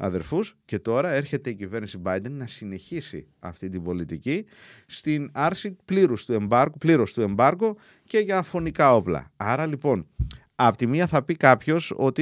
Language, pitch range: Greek, 105-155 Hz